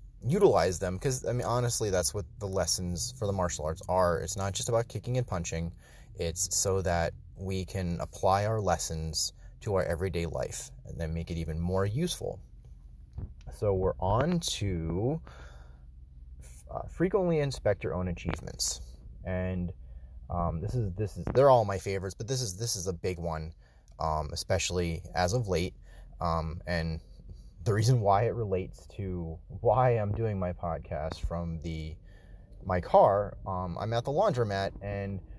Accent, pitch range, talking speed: American, 85-110 Hz, 165 wpm